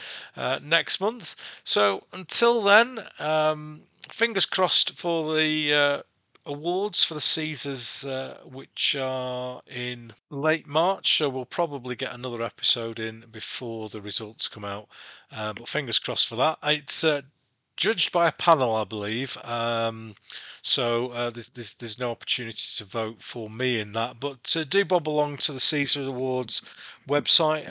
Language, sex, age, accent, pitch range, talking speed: English, male, 40-59, British, 115-155 Hz, 160 wpm